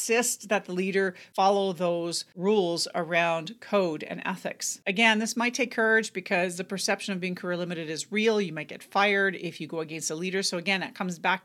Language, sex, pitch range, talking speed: English, female, 170-200 Hz, 210 wpm